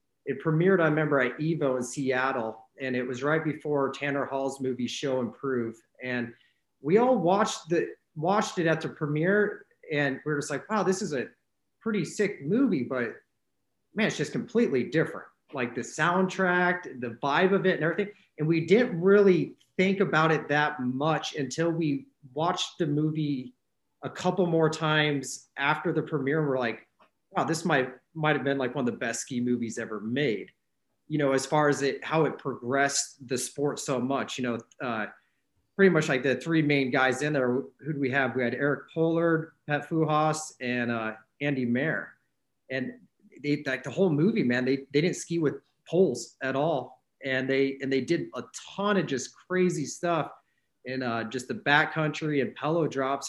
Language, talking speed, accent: English, 185 wpm, American